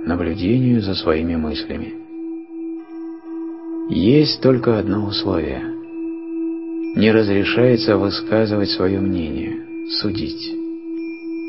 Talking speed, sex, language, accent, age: 75 wpm, male, Russian, native, 50-69